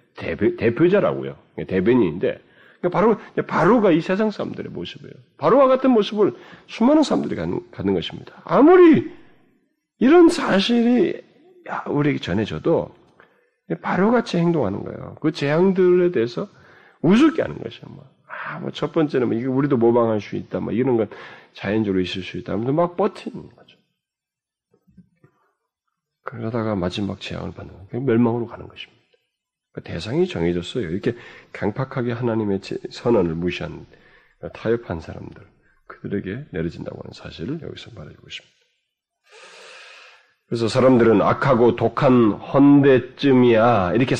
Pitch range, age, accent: 115-185 Hz, 40-59, native